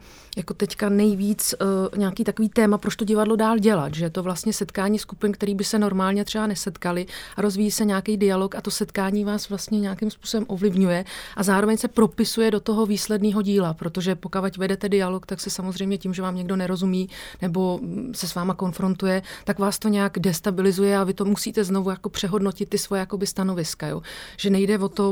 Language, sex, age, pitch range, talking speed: Slovak, female, 30-49, 195-210 Hz, 205 wpm